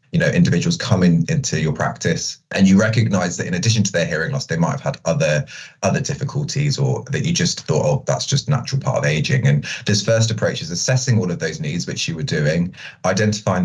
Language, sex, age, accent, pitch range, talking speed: English, male, 20-39, British, 95-145 Hz, 230 wpm